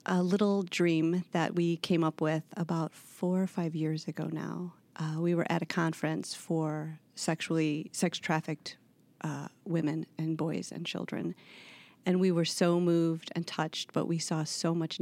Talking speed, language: 170 wpm, English